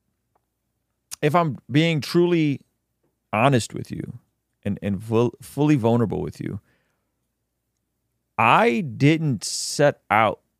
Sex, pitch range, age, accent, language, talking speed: male, 100-120 Hz, 30-49, American, English, 95 wpm